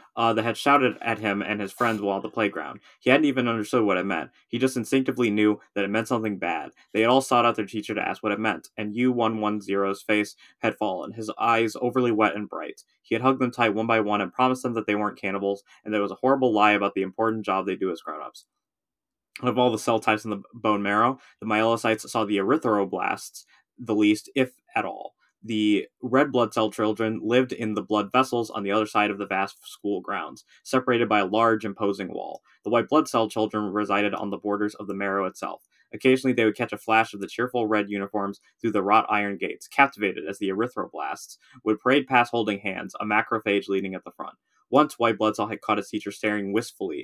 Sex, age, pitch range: male, 20-39, 100-115 Hz